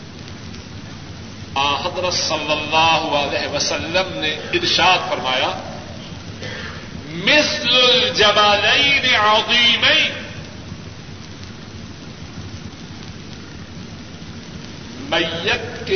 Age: 50-69